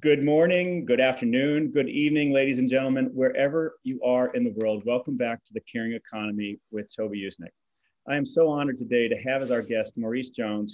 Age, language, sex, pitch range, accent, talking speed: 30-49, English, male, 115-160 Hz, American, 200 wpm